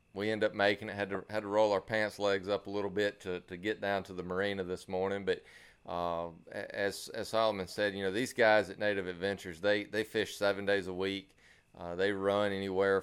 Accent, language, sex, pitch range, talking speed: American, English, male, 95-105 Hz, 230 wpm